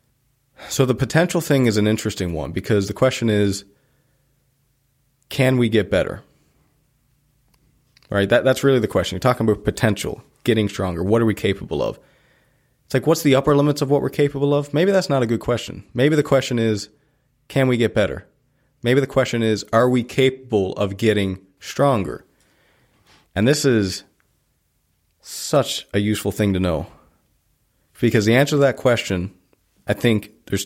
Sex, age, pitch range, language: male, 30-49, 100-135 Hz, English